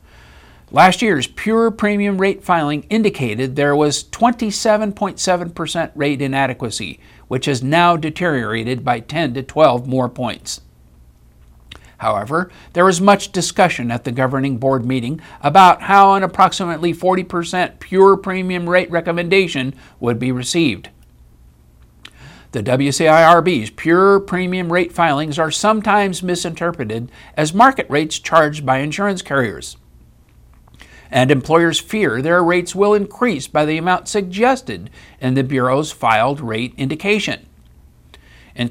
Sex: male